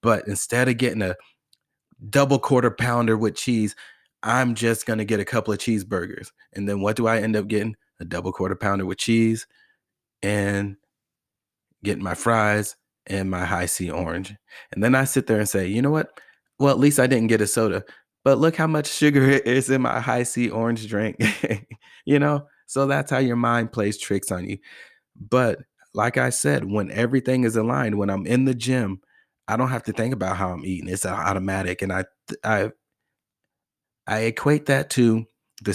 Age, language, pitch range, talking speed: 30-49, English, 100-130 Hz, 195 wpm